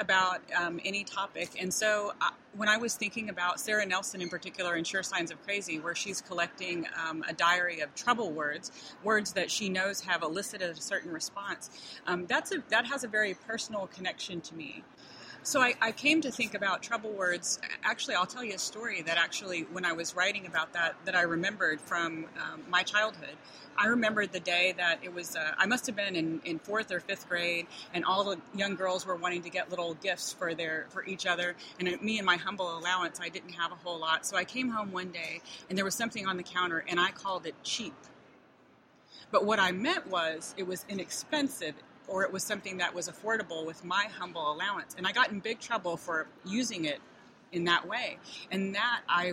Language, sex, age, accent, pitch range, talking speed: English, female, 30-49, American, 175-210 Hz, 220 wpm